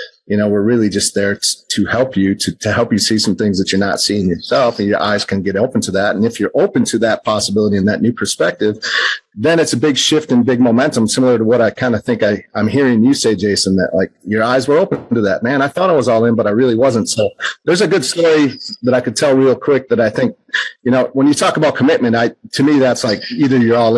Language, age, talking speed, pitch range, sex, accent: English, 40-59, 275 wpm, 105-140 Hz, male, American